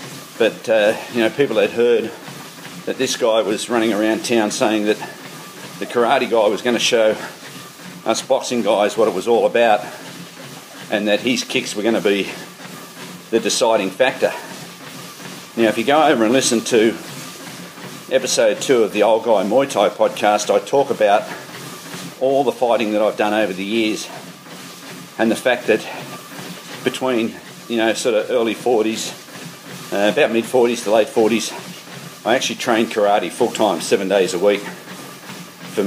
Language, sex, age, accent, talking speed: English, male, 50-69, Australian, 165 wpm